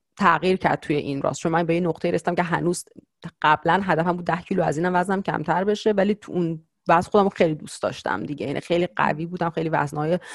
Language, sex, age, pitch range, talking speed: Persian, female, 30-49, 150-175 Hz, 220 wpm